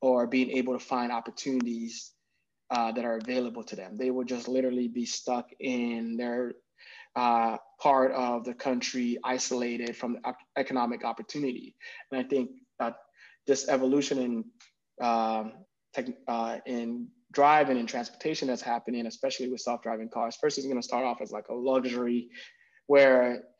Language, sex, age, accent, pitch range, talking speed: English, male, 20-39, American, 120-135 Hz, 155 wpm